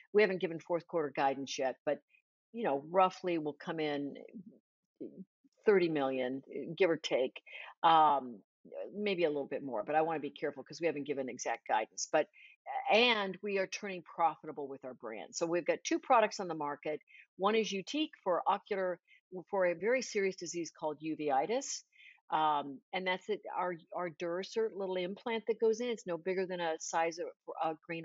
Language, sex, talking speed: English, female, 185 wpm